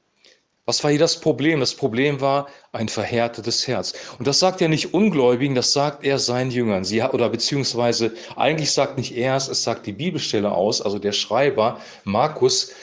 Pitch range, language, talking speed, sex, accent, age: 120-150 Hz, German, 180 wpm, male, German, 40-59